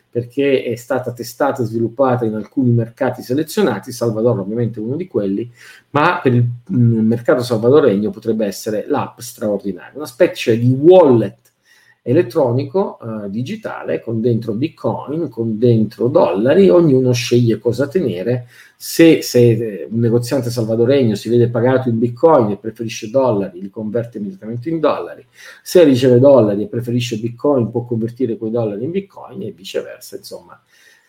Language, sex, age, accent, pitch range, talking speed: Italian, male, 50-69, native, 115-145 Hz, 145 wpm